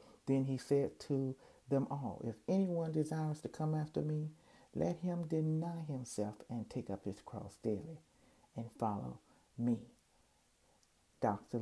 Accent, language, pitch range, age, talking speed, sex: American, English, 115-140 Hz, 60-79, 140 wpm, male